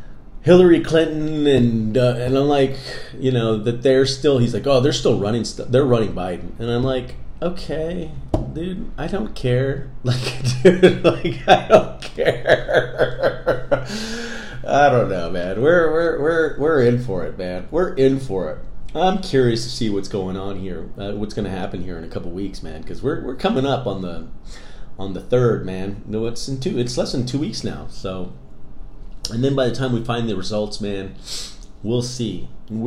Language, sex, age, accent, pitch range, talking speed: English, male, 30-49, American, 110-145 Hz, 195 wpm